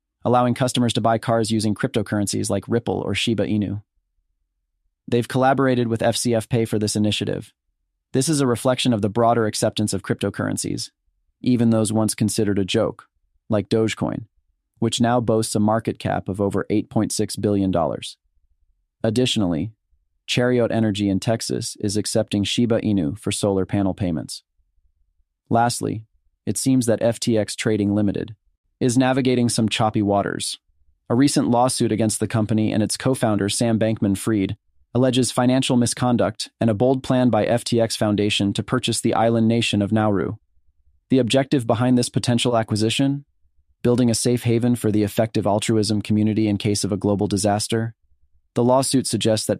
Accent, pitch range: American, 100-120 Hz